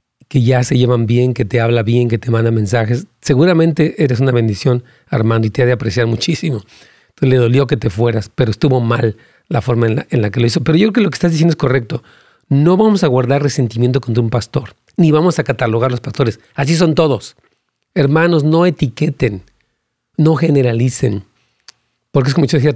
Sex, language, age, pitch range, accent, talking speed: male, Spanish, 40-59, 120-155 Hz, Mexican, 210 wpm